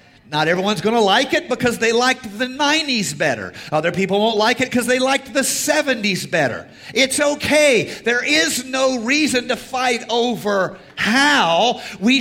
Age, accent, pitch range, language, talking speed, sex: 50-69, American, 205-270 Hz, English, 160 wpm, male